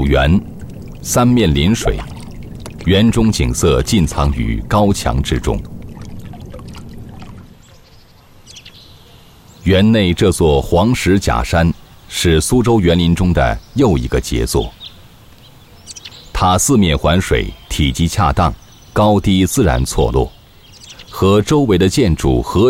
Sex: male